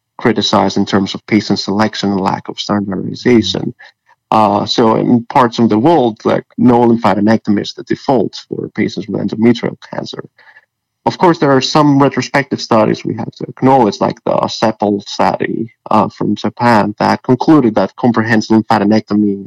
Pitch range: 105-115 Hz